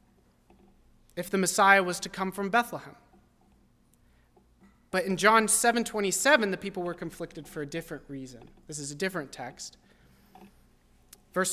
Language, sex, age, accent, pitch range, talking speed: English, male, 30-49, American, 150-210 Hz, 140 wpm